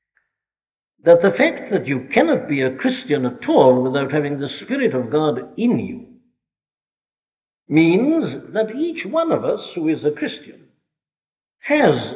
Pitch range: 145-235 Hz